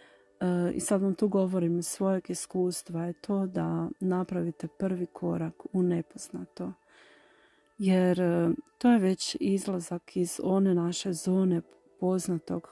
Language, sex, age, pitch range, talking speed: Croatian, female, 40-59, 170-190 Hz, 120 wpm